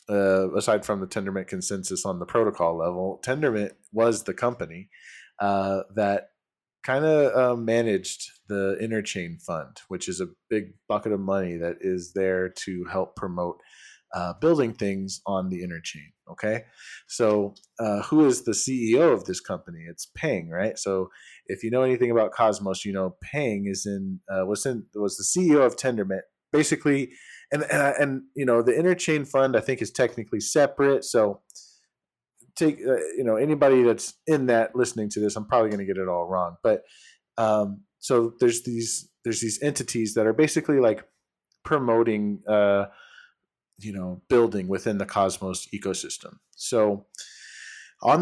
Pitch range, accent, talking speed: 95-120 Hz, American, 165 wpm